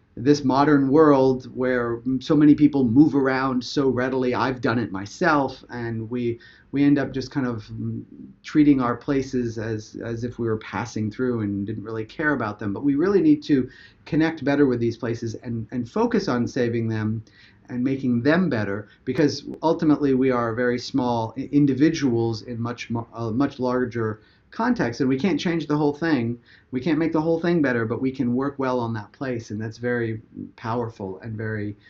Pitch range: 115-145 Hz